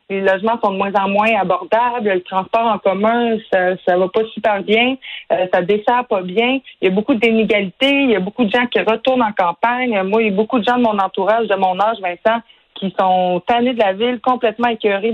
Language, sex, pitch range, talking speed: French, female, 190-235 Hz, 240 wpm